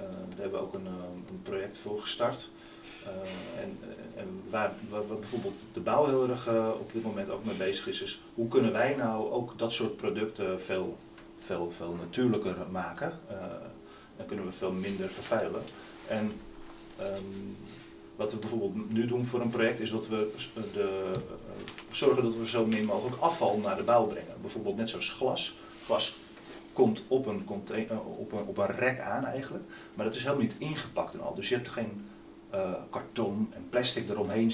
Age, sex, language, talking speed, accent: 40-59, male, Dutch, 190 wpm, Dutch